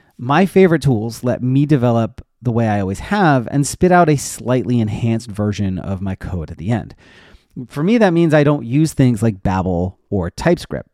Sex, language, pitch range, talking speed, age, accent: male, English, 115-150 Hz, 195 wpm, 30-49, American